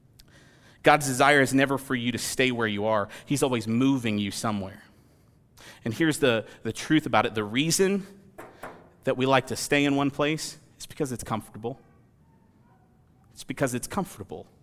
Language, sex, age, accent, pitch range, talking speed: English, male, 40-59, American, 120-145 Hz, 170 wpm